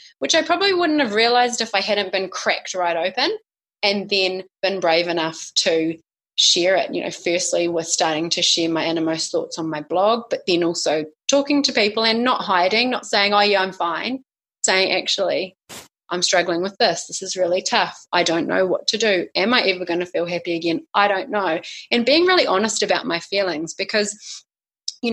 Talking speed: 205 wpm